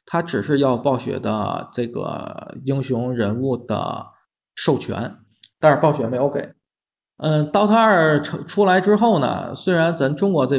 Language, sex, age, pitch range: Chinese, male, 20-39, 120-150 Hz